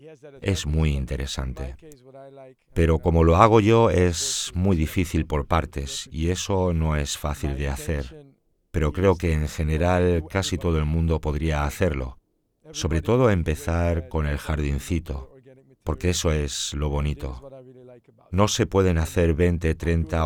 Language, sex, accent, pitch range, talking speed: Spanish, male, Spanish, 75-100 Hz, 140 wpm